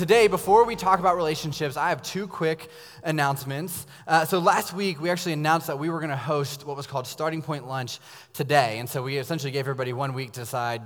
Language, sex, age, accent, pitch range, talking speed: English, male, 20-39, American, 135-165 Hz, 225 wpm